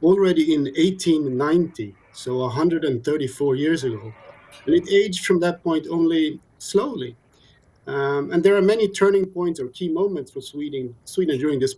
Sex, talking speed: male, 155 wpm